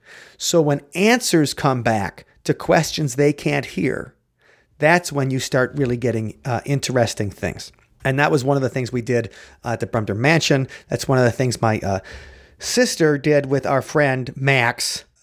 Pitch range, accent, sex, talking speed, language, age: 120-150 Hz, American, male, 185 wpm, English, 40-59